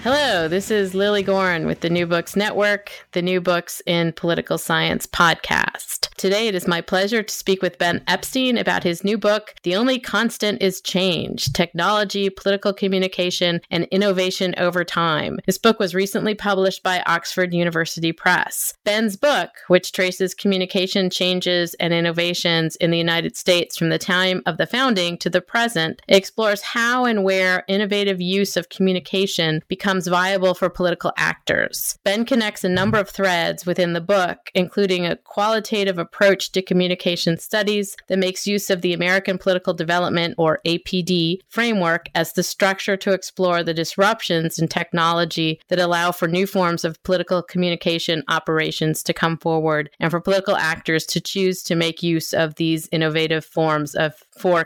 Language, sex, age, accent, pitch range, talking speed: English, female, 30-49, American, 170-195 Hz, 165 wpm